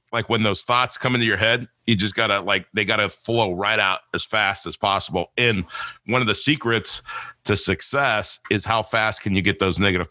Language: English